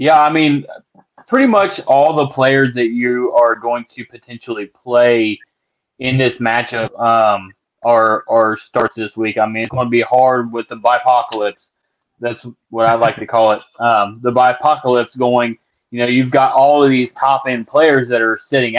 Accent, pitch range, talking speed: American, 115-135 Hz, 185 wpm